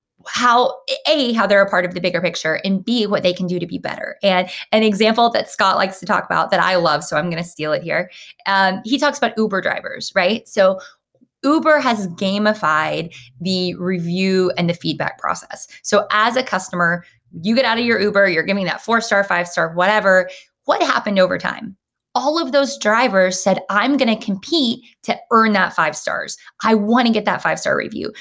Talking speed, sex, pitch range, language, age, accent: 210 wpm, female, 190-235 Hz, English, 20-39, American